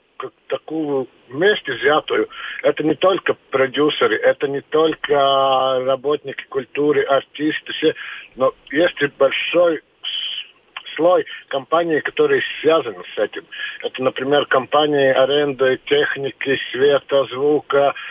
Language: Russian